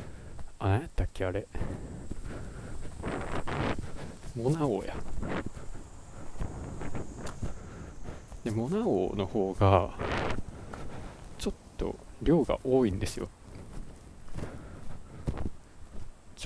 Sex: male